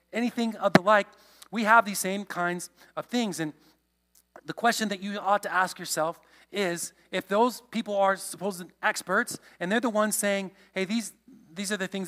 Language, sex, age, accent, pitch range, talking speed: English, male, 40-59, American, 175-215 Hz, 200 wpm